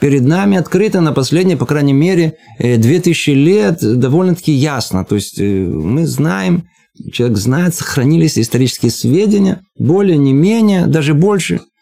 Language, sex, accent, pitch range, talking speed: Russian, male, native, 120-175 Hz, 120 wpm